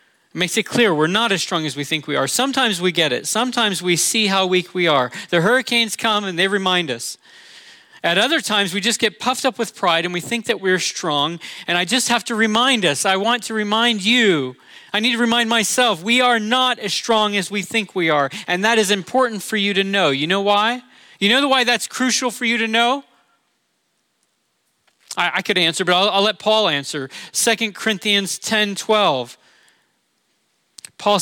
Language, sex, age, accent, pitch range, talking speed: English, male, 40-59, American, 160-225 Hz, 210 wpm